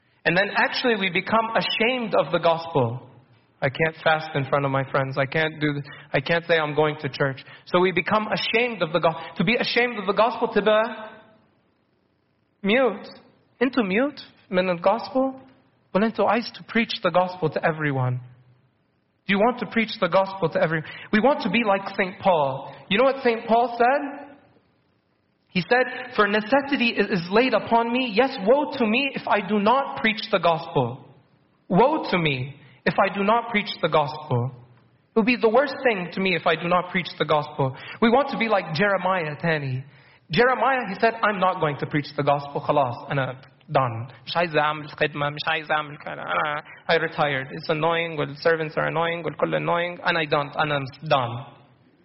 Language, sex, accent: English, male, American